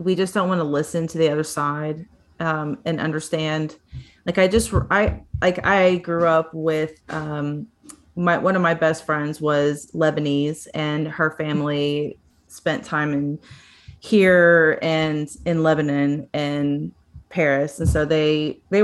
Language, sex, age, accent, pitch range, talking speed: English, female, 30-49, American, 150-170 Hz, 150 wpm